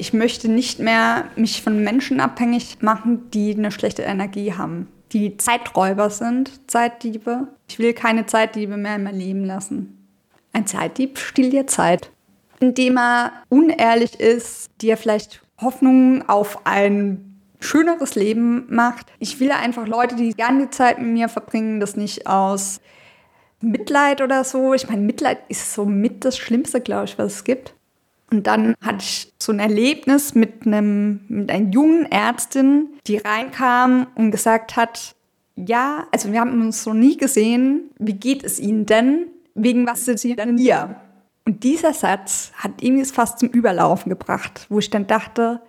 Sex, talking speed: female, 165 wpm